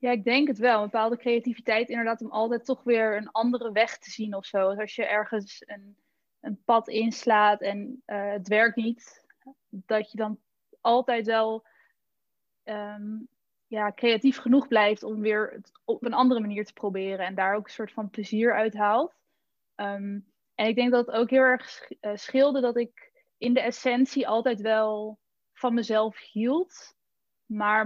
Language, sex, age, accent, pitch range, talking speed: Dutch, female, 20-39, Dutch, 210-245 Hz, 165 wpm